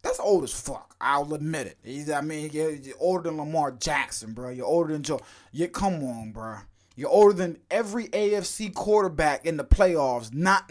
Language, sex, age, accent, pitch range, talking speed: English, male, 20-39, American, 120-190 Hz, 185 wpm